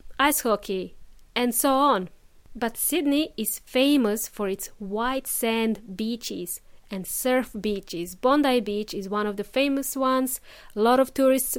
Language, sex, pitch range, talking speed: English, female, 210-265 Hz, 150 wpm